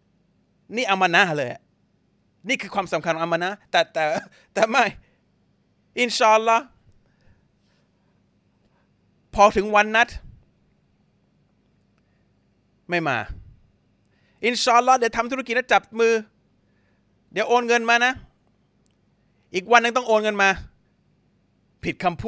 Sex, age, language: male, 30-49, Thai